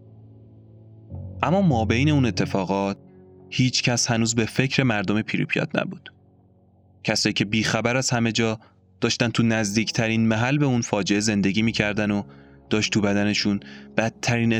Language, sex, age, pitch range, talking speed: Persian, male, 20-39, 95-115 Hz, 135 wpm